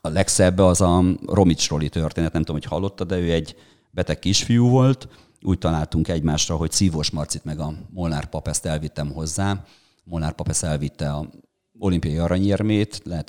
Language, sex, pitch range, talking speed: Hungarian, male, 75-100 Hz, 165 wpm